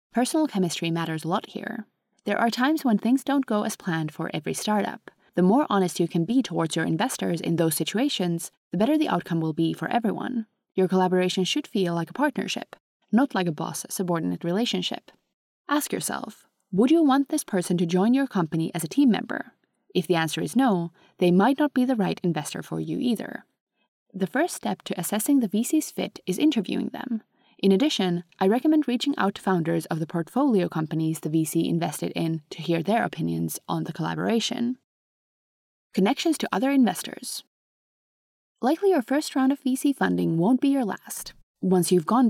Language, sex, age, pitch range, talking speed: English, female, 20-39, 175-260 Hz, 185 wpm